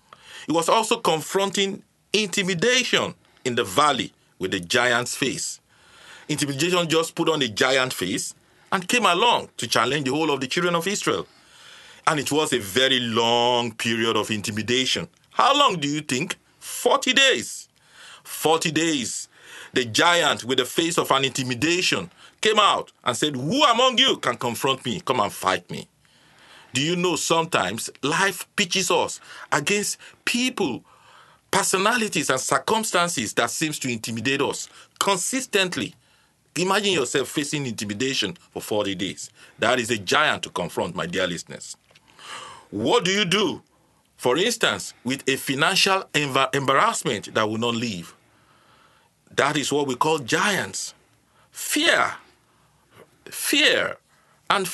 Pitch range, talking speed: 125-190 Hz, 140 wpm